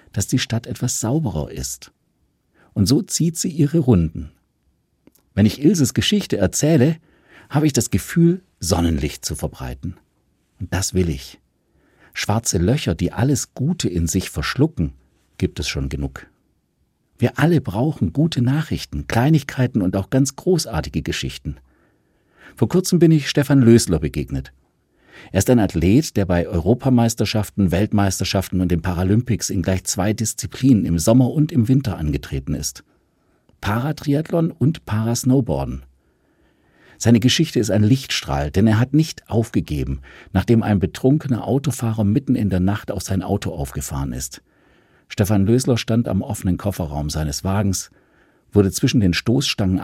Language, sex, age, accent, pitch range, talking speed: German, male, 50-69, German, 90-130 Hz, 140 wpm